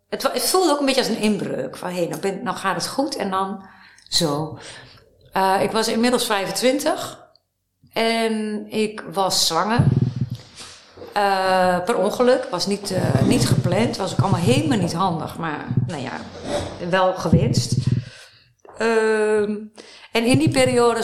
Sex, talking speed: female, 150 wpm